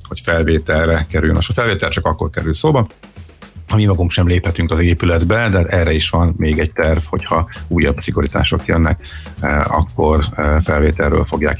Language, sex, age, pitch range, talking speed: Hungarian, male, 50-69, 80-100 Hz, 160 wpm